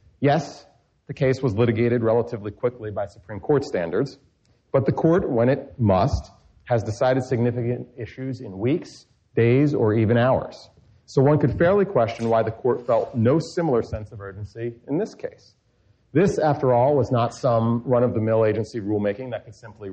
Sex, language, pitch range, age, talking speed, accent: male, English, 105-135 Hz, 40-59, 170 wpm, American